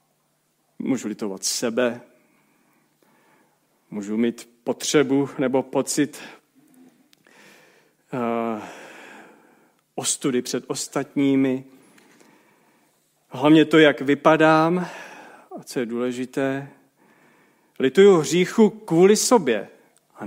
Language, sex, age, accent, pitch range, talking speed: Czech, male, 40-59, native, 125-160 Hz, 70 wpm